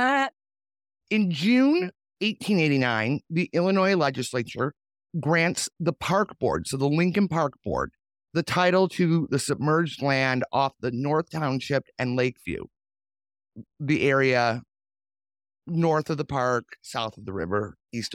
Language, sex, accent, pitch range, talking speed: English, male, American, 120-170 Hz, 125 wpm